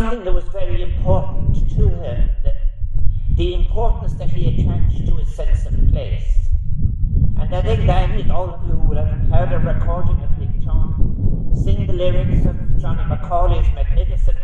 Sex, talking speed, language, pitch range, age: male, 165 wpm, English, 90-105 Hz, 60-79